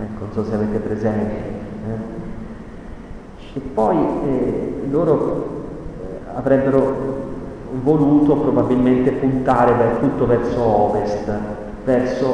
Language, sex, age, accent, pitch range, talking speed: Italian, male, 30-49, native, 110-150 Hz, 90 wpm